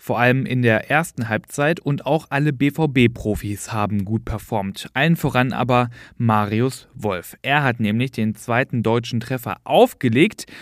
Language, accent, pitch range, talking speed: German, German, 115-145 Hz, 145 wpm